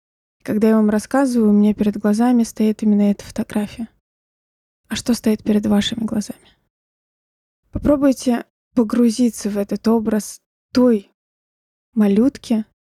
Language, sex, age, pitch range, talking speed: Russian, female, 20-39, 205-235 Hz, 115 wpm